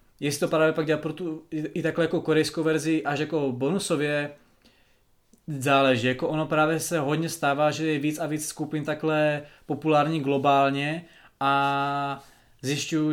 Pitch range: 140-155 Hz